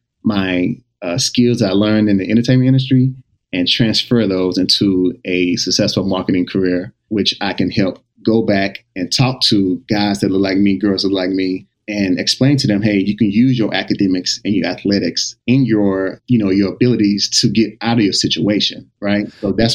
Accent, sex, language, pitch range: American, male, English, 100-120 Hz